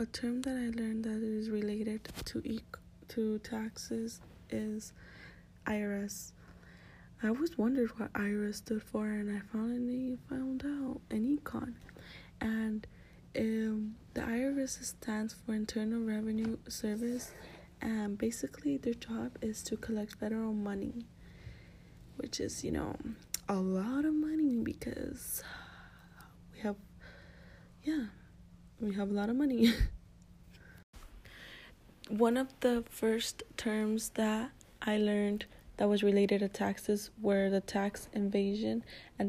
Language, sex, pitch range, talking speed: English, female, 205-235 Hz, 125 wpm